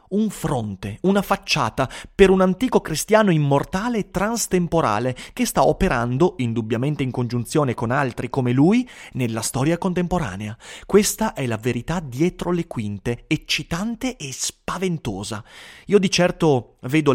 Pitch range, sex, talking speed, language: 120-180 Hz, male, 135 wpm, Italian